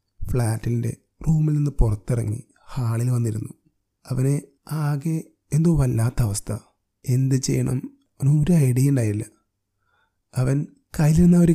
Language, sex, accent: Malayalam, male, native